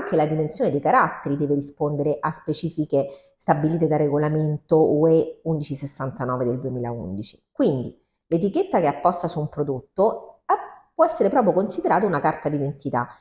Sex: female